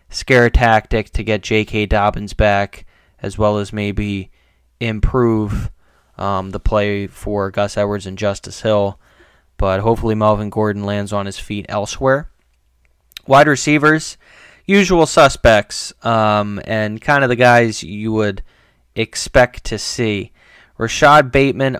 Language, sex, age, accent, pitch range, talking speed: English, male, 20-39, American, 100-115 Hz, 130 wpm